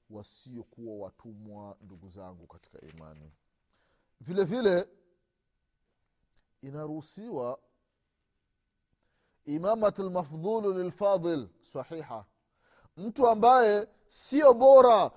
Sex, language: male, Swahili